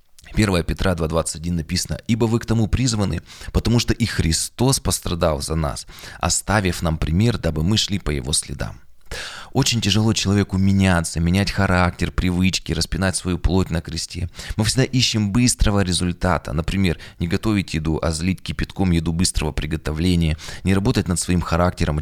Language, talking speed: Russian, 160 wpm